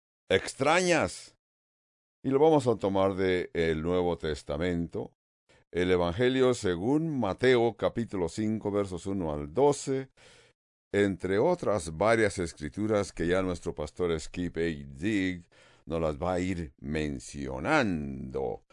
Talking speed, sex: 120 wpm, male